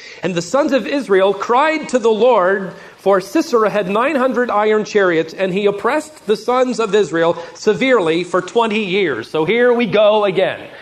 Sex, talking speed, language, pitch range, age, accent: male, 170 wpm, English, 180-245 Hz, 40-59, American